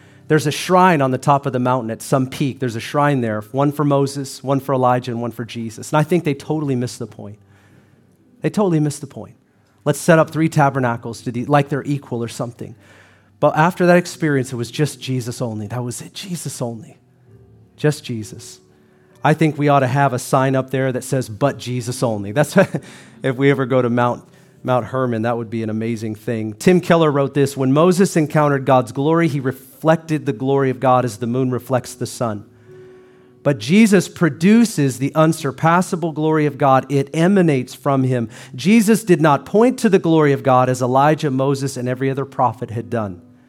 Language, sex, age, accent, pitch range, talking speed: English, male, 40-59, American, 120-150 Hz, 200 wpm